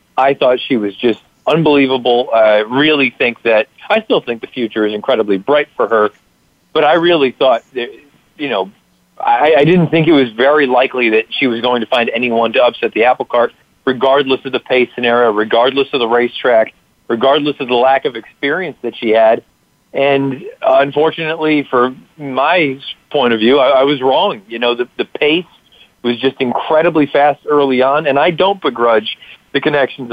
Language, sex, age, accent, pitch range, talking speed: English, male, 40-59, American, 120-150 Hz, 185 wpm